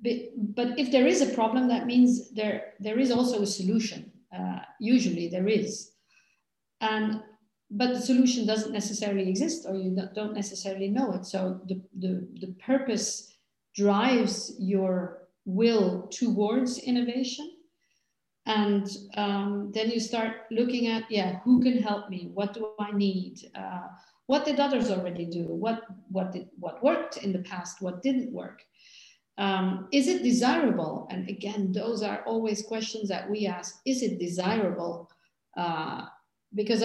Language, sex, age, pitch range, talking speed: English, female, 50-69, 190-245 Hz, 150 wpm